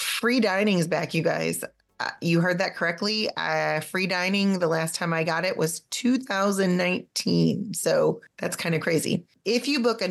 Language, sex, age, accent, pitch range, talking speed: English, female, 30-49, American, 165-205 Hz, 185 wpm